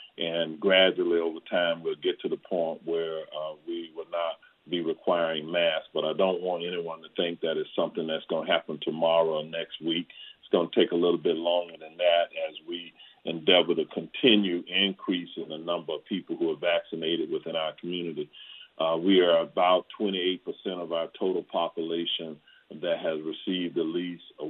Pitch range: 85-105 Hz